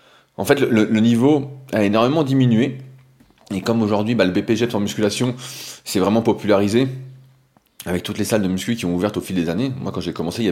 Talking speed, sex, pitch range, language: 215 wpm, male, 95-125 Hz, French